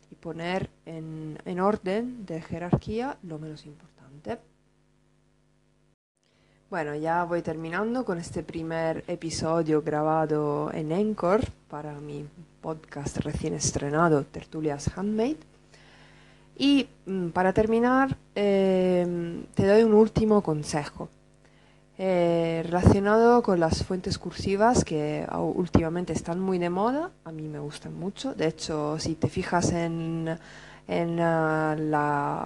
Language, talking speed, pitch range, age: English, 115 wpm, 155-195 Hz, 20-39